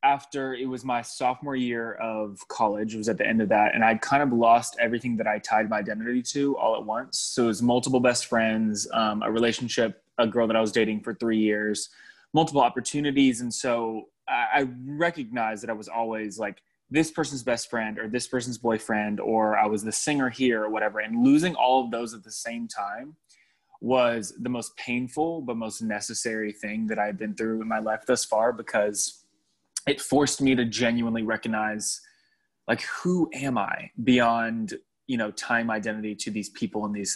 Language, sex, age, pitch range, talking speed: English, male, 20-39, 110-130 Hz, 200 wpm